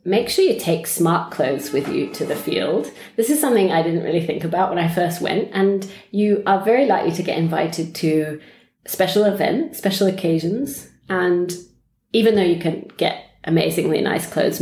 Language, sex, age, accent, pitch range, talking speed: English, female, 30-49, British, 165-205 Hz, 190 wpm